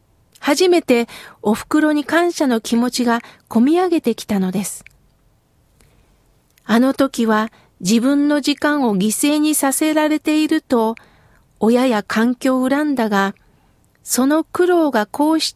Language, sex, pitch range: Japanese, female, 215-295 Hz